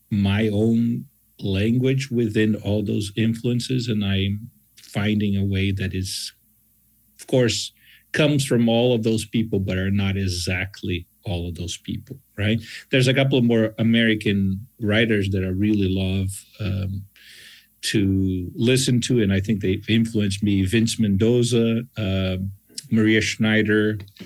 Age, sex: 50-69, male